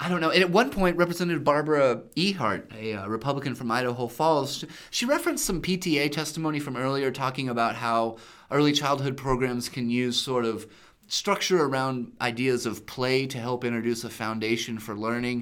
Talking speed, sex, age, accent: 175 wpm, male, 30-49, American